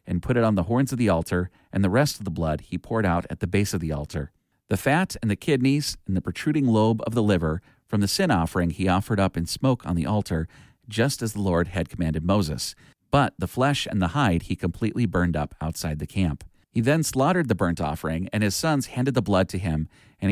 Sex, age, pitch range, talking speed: male, 40-59, 85-115 Hz, 245 wpm